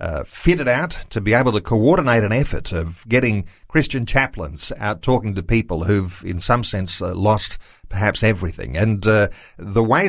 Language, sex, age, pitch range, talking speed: English, male, 40-59, 105-135 Hz, 180 wpm